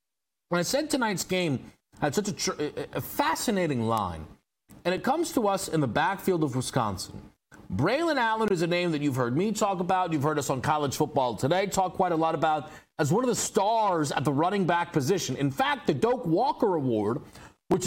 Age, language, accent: 40-59, English, American